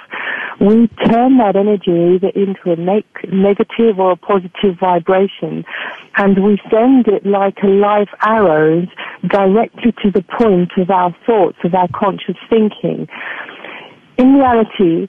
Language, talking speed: English, 130 wpm